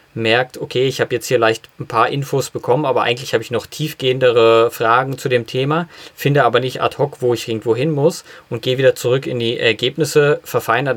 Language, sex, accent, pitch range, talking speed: German, male, German, 115-150 Hz, 215 wpm